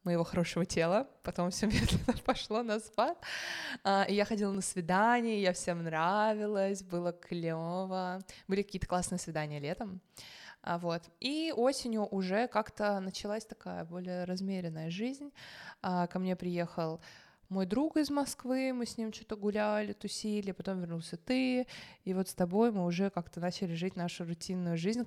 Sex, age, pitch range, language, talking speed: female, 20-39, 175-215 Hz, Russian, 145 wpm